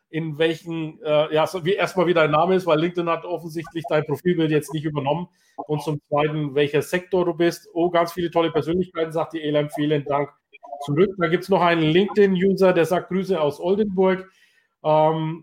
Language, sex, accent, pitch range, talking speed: German, male, German, 145-180 Hz, 195 wpm